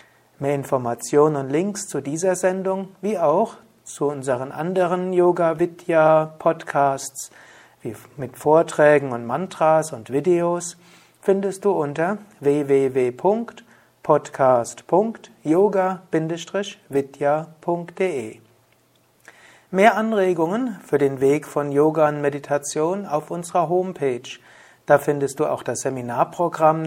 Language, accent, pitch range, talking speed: German, German, 140-180 Hz, 90 wpm